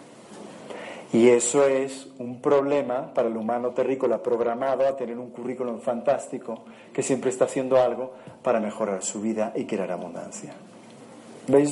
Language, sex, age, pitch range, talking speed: Spanish, male, 40-59, 125-155 Hz, 145 wpm